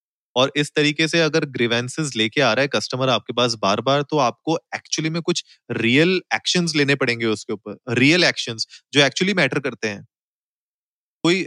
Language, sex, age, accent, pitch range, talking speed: Hindi, male, 30-49, native, 120-160 Hz, 180 wpm